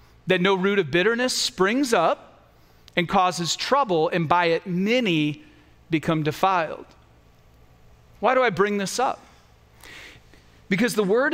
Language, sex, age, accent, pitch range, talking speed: English, male, 40-59, American, 175-240 Hz, 130 wpm